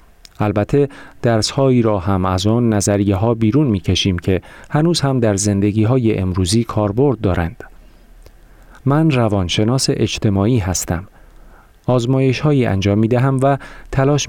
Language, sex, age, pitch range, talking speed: Persian, male, 40-59, 95-125 Hz, 125 wpm